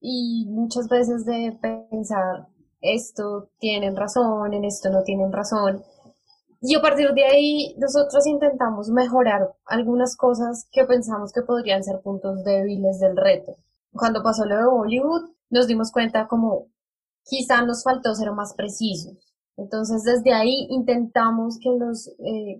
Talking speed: 145 wpm